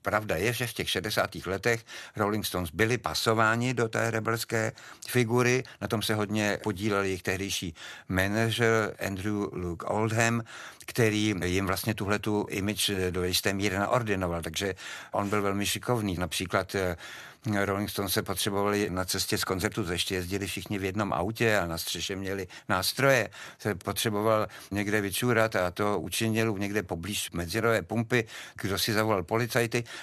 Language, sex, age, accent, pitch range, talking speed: Czech, male, 60-79, native, 95-110 Hz, 150 wpm